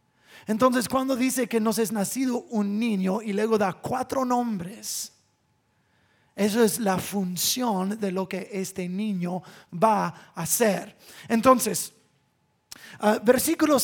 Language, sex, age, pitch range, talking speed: English, male, 30-49, 210-260 Hz, 120 wpm